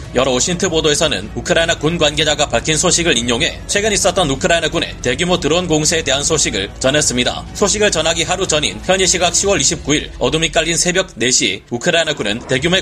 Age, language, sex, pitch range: 30-49, Korean, male, 145-185 Hz